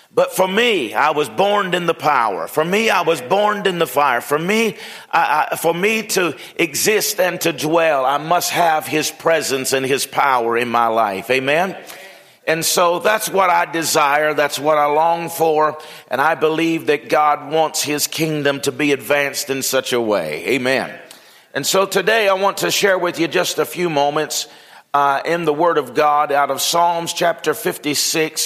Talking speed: 190 wpm